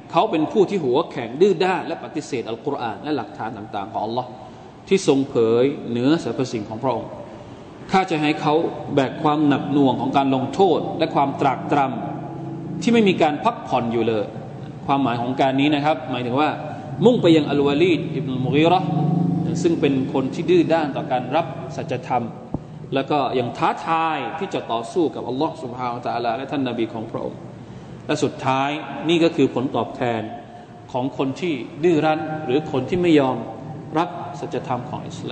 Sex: male